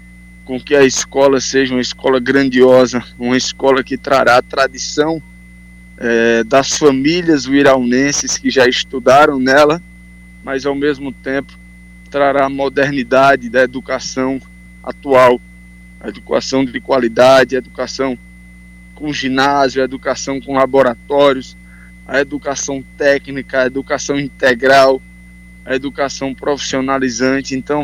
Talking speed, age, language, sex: 115 wpm, 20-39, Portuguese, male